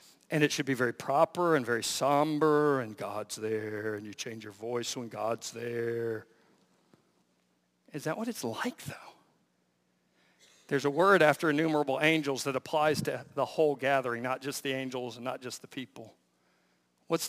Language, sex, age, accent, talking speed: English, male, 50-69, American, 165 wpm